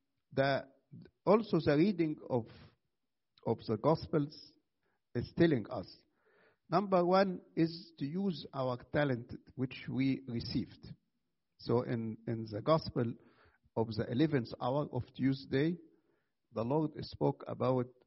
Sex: male